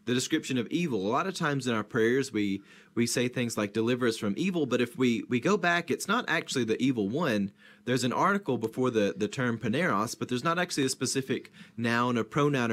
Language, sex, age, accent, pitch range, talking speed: English, male, 30-49, American, 115-145 Hz, 230 wpm